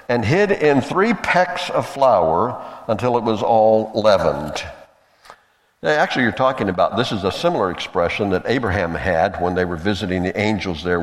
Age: 60-79